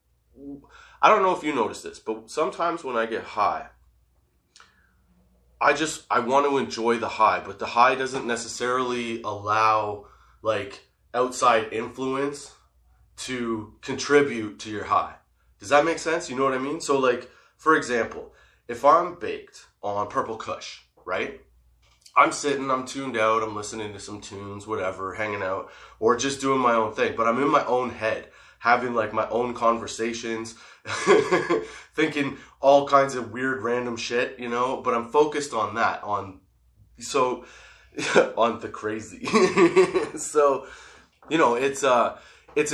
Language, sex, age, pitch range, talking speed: English, male, 20-39, 110-140 Hz, 155 wpm